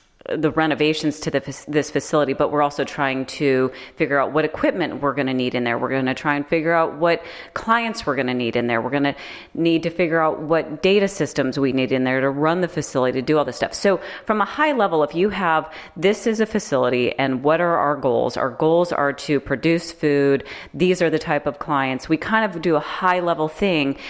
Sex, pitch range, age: female, 140-175 Hz, 30-49